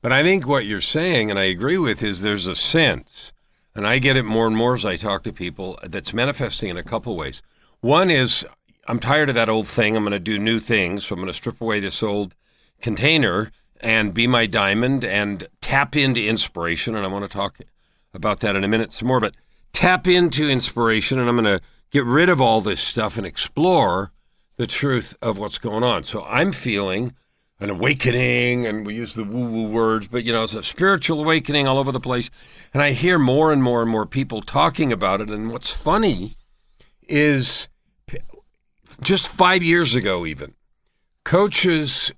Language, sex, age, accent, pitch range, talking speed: English, male, 50-69, American, 105-145 Hz, 200 wpm